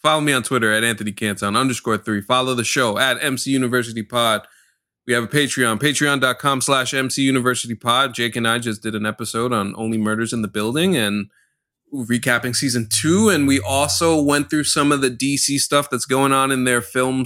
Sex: male